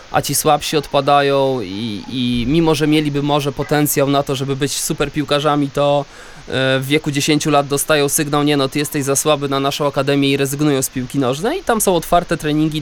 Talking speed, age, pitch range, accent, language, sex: 195 wpm, 20-39, 140-170 Hz, native, Polish, male